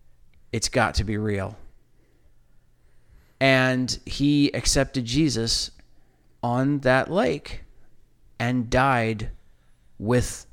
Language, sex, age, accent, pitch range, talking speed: English, male, 40-59, American, 95-130 Hz, 85 wpm